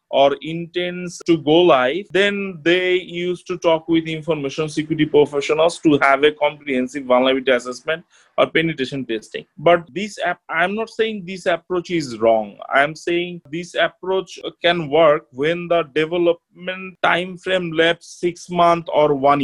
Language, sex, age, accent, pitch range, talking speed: English, male, 30-49, Indian, 155-175 Hz, 150 wpm